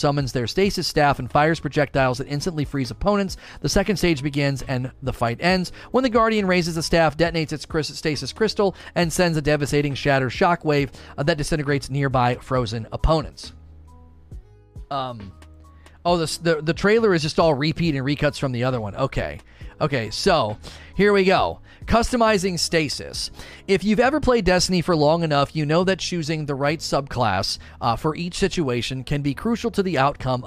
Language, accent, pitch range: English, American, 125-170 Hz